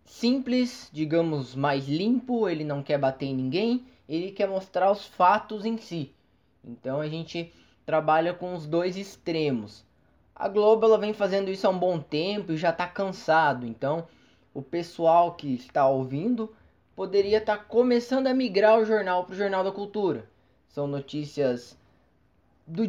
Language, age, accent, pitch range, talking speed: Portuguese, 10-29, Brazilian, 140-190 Hz, 155 wpm